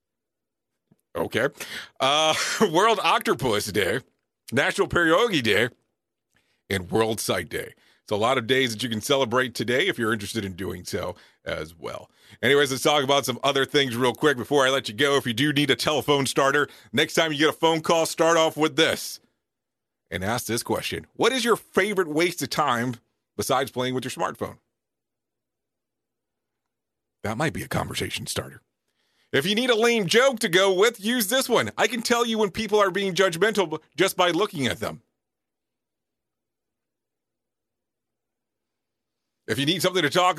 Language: English